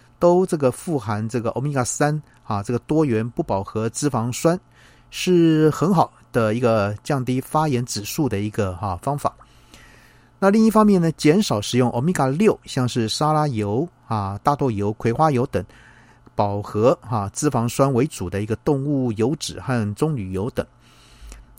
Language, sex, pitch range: Chinese, male, 110-140 Hz